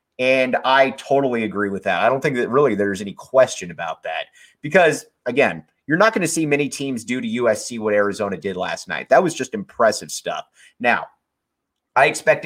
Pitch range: 115-160 Hz